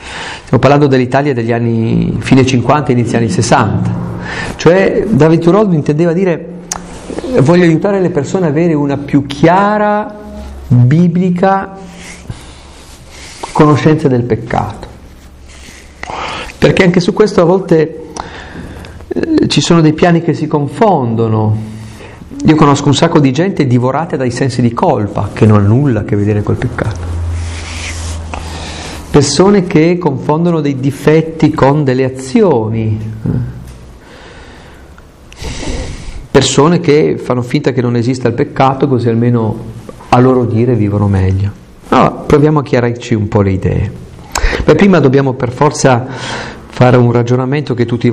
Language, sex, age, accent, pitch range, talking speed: Italian, male, 50-69, native, 105-150 Hz, 130 wpm